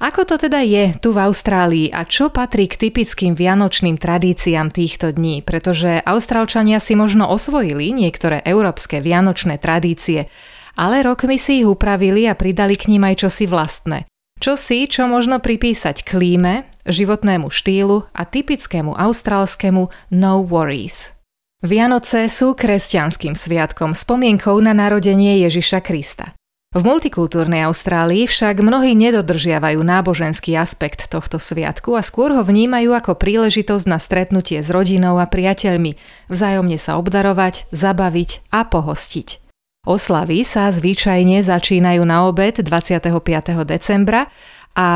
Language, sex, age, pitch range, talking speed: Slovak, female, 20-39, 175-215 Hz, 125 wpm